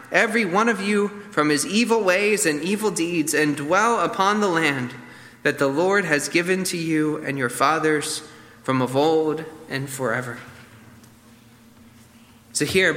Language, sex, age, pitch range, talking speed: English, male, 20-39, 135-205 Hz, 155 wpm